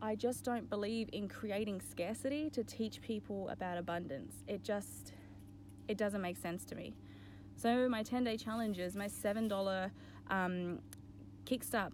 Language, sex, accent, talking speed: English, female, Australian, 145 wpm